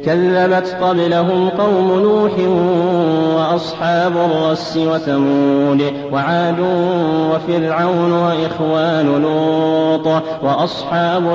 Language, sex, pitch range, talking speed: Arabic, male, 140-175 Hz, 65 wpm